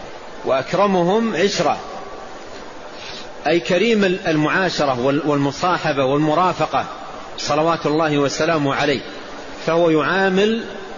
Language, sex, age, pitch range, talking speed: Arabic, male, 40-59, 155-200 Hz, 70 wpm